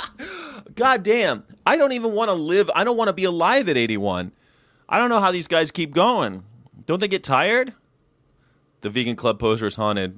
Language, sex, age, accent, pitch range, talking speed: English, male, 30-49, American, 105-170 Hz, 200 wpm